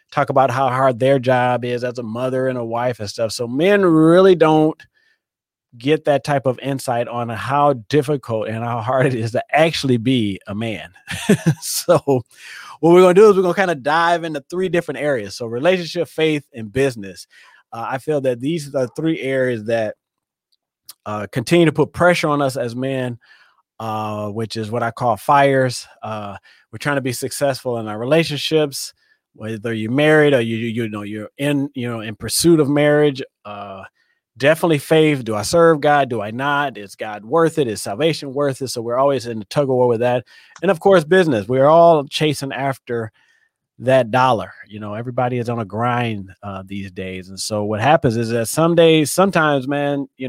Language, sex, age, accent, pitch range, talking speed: English, male, 30-49, American, 115-150 Hz, 200 wpm